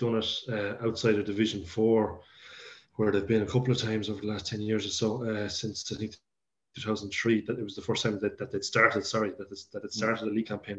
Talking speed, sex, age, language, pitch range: 240 wpm, male, 20-39, English, 105-115 Hz